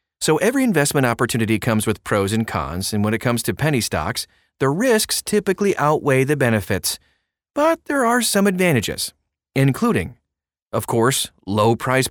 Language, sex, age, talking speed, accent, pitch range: English, male, 30-49, 160 wpm, American, 105-145 Hz